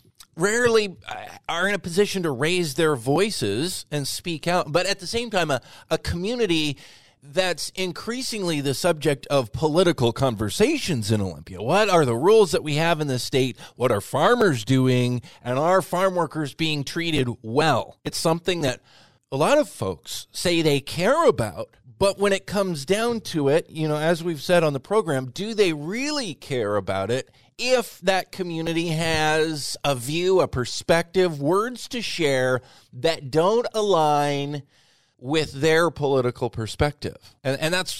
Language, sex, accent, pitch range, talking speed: English, male, American, 130-175 Hz, 165 wpm